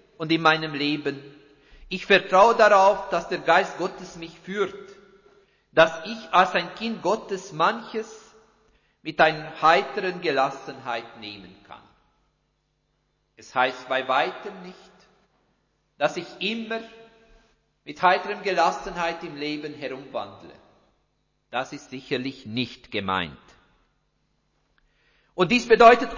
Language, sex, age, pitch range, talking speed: German, male, 50-69, 145-215 Hz, 110 wpm